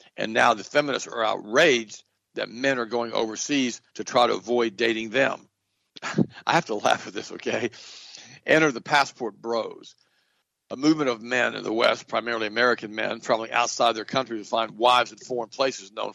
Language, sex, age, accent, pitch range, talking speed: English, male, 60-79, American, 110-130 Hz, 180 wpm